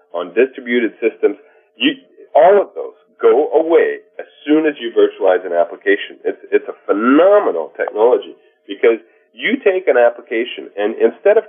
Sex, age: male, 40-59